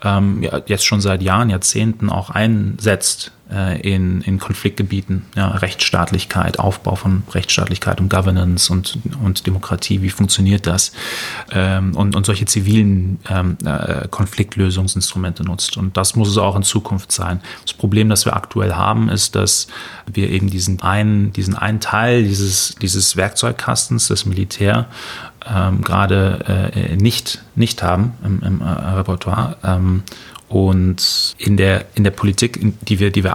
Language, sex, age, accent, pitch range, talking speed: German, male, 30-49, German, 95-110 Hz, 130 wpm